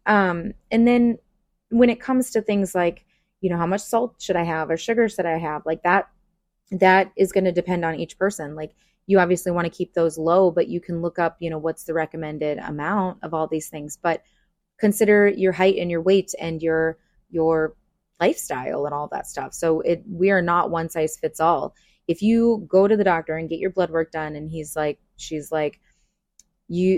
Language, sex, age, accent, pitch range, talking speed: English, female, 20-39, American, 160-195 Hz, 215 wpm